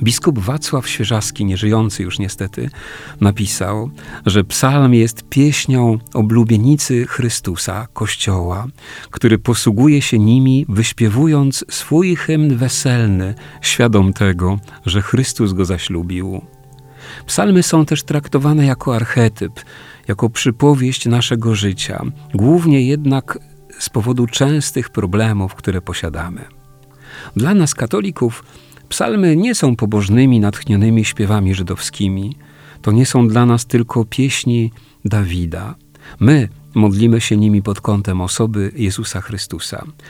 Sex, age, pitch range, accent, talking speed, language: male, 50-69, 105-135 Hz, native, 110 wpm, Polish